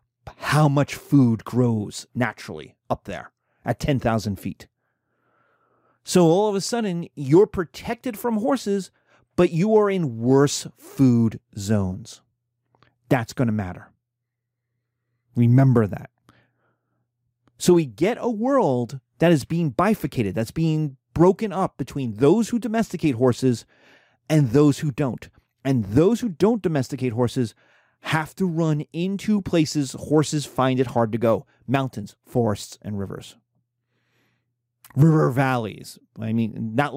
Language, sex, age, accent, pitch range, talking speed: English, male, 30-49, American, 120-155 Hz, 130 wpm